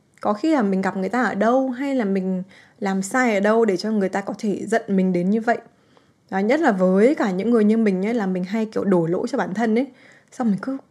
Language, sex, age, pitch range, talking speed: Vietnamese, female, 20-39, 190-245 Hz, 275 wpm